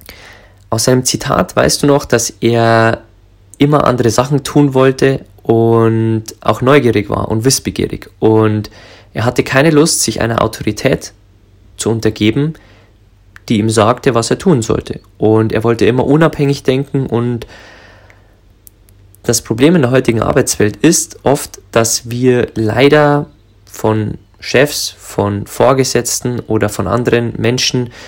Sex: male